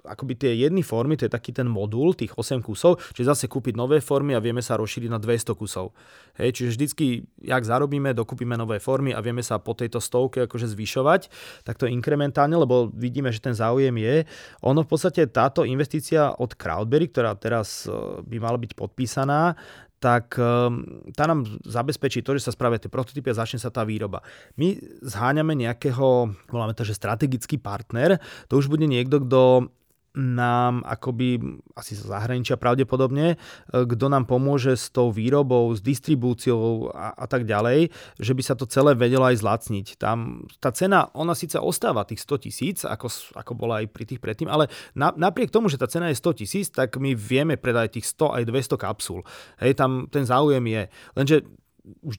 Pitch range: 115-140 Hz